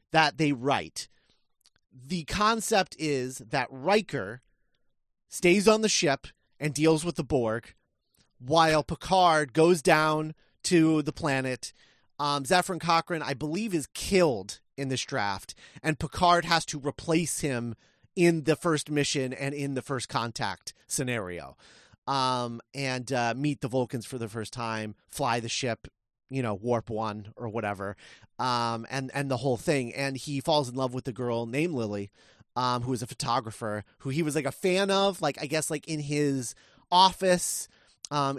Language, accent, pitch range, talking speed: English, American, 120-155 Hz, 165 wpm